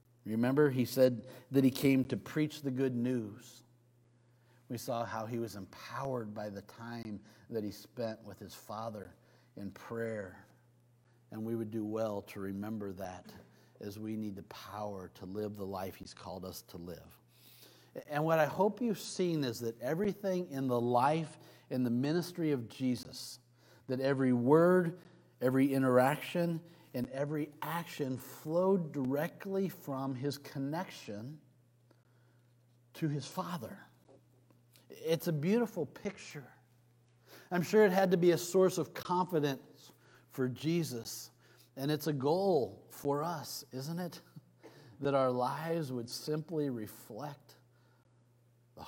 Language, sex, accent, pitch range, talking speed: English, male, American, 115-150 Hz, 140 wpm